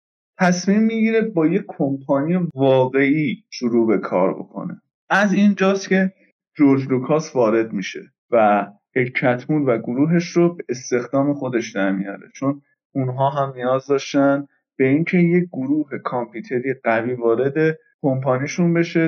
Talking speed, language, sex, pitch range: 125 wpm, Persian, male, 125-165 Hz